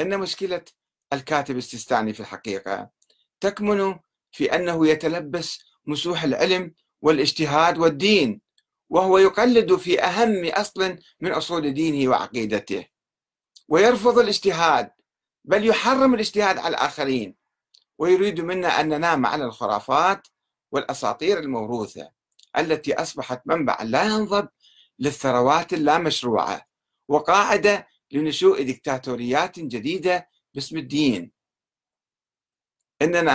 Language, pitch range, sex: Arabic, 140-195 Hz, male